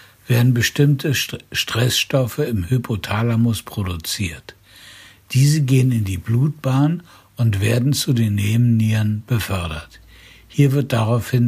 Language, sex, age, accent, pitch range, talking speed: German, male, 60-79, German, 110-135 Hz, 105 wpm